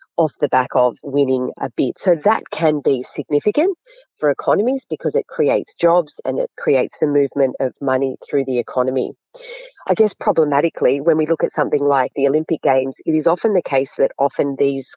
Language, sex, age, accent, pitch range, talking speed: English, female, 30-49, Australian, 135-175 Hz, 195 wpm